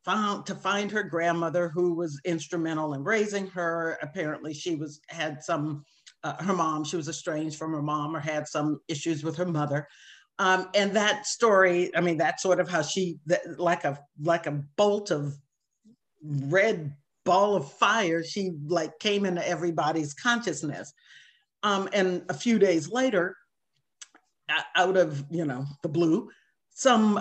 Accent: American